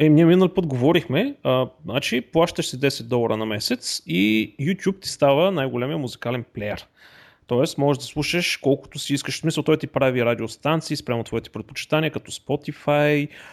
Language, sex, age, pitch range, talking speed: Bulgarian, male, 30-49, 130-160 Hz, 170 wpm